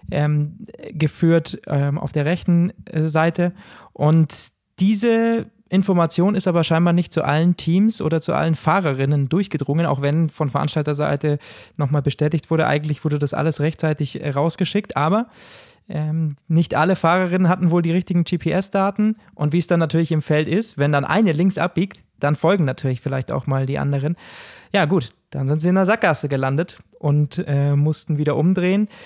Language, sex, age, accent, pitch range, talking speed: German, male, 20-39, German, 145-175 Hz, 165 wpm